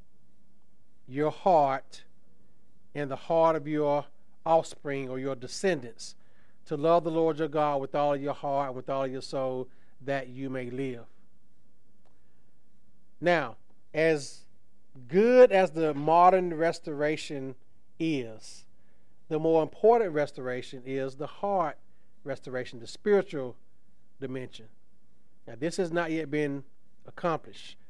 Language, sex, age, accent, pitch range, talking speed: English, male, 40-59, American, 130-160 Hz, 120 wpm